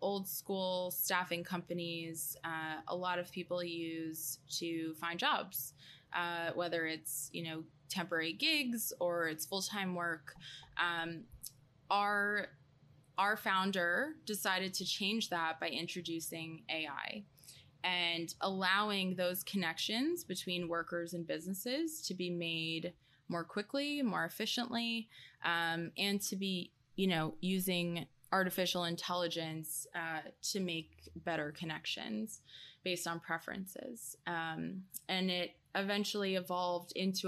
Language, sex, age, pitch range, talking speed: English, female, 20-39, 165-190 Hz, 115 wpm